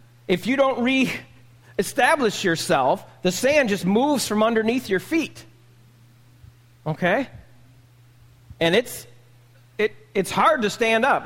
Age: 40-59